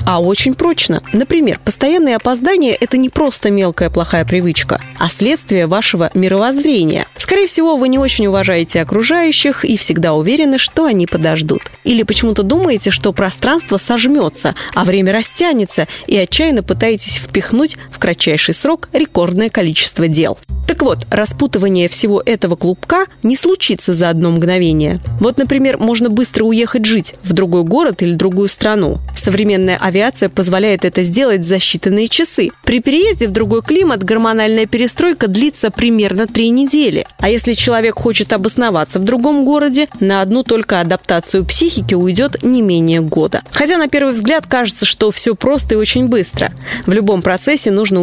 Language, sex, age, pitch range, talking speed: Russian, female, 20-39, 185-260 Hz, 150 wpm